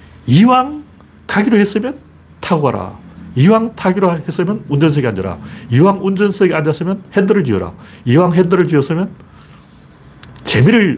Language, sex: Korean, male